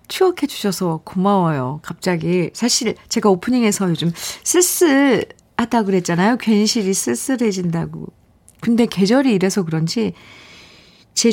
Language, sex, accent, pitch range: Korean, female, native, 170-230 Hz